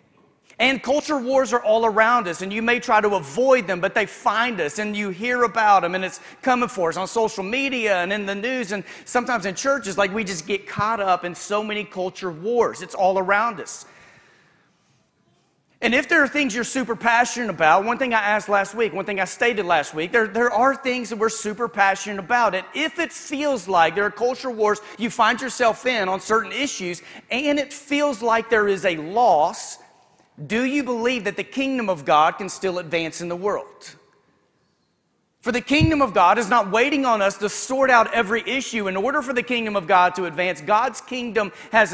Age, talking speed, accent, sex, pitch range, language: 40-59, 215 wpm, American, male, 185-240 Hz, English